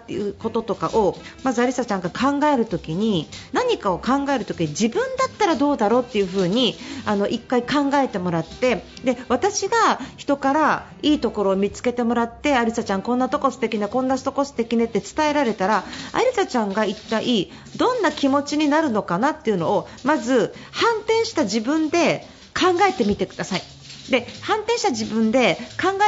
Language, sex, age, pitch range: Japanese, female, 40-59, 220-320 Hz